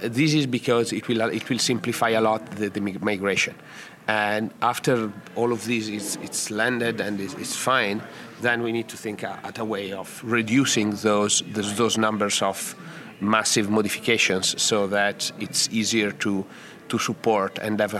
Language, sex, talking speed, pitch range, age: English, male, 165 wpm, 105-120 Hz, 40-59